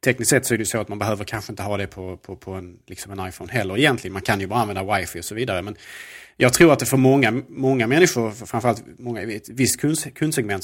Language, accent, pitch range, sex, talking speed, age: Swedish, Norwegian, 100-130 Hz, male, 255 wpm, 30-49